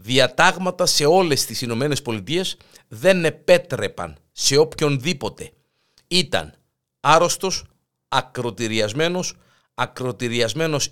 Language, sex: Greek, male